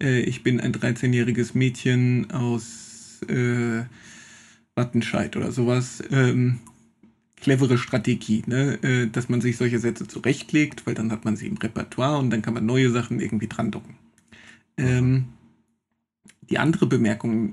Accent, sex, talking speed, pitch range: German, male, 135 wpm, 115-130 Hz